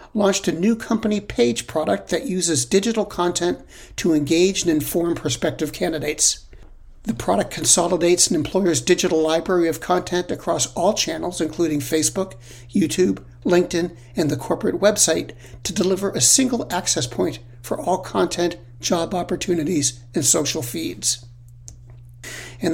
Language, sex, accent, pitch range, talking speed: English, male, American, 130-175 Hz, 135 wpm